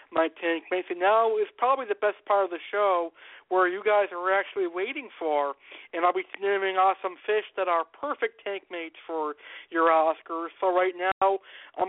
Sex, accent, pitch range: male, American, 190-265 Hz